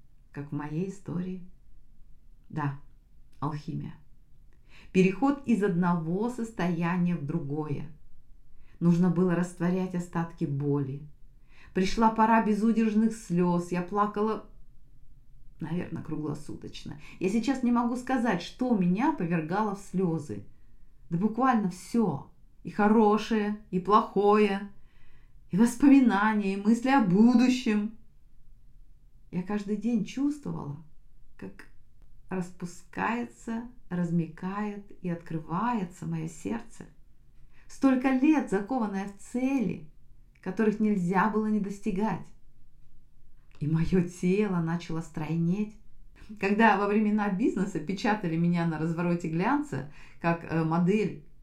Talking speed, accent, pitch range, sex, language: 100 wpm, native, 155-215 Hz, female, Russian